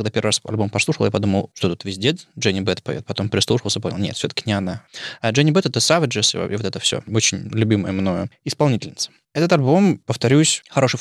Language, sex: Russian, male